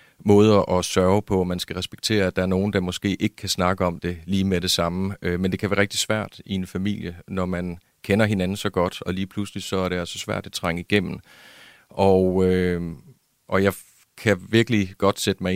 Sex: male